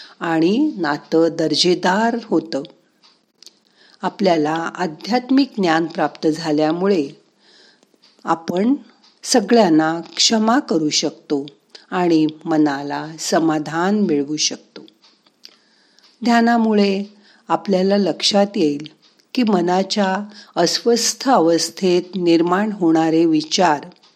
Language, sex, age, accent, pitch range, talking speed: Marathi, female, 50-69, native, 160-220 Hz, 75 wpm